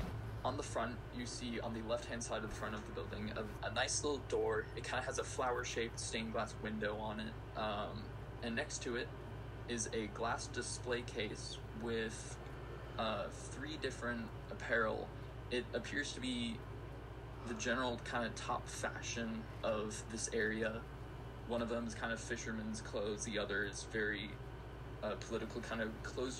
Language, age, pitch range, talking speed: English, 20-39, 110-125 Hz, 175 wpm